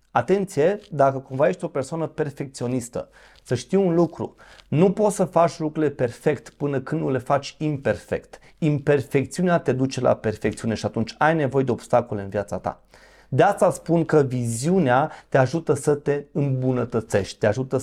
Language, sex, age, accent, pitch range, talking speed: Romanian, male, 30-49, native, 115-155 Hz, 165 wpm